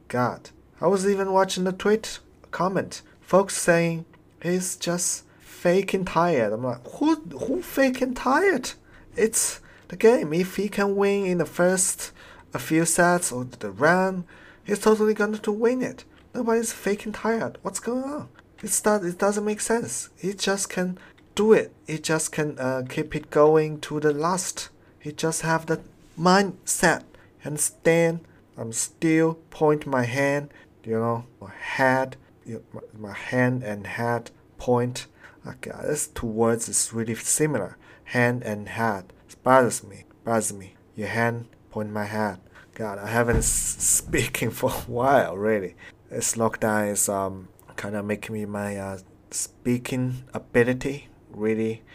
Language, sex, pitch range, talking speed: English, male, 110-180 Hz, 155 wpm